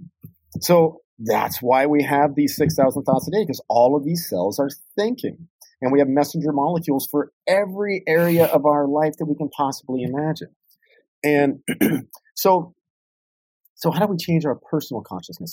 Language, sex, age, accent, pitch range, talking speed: English, male, 40-59, American, 125-165 Hz, 165 wpm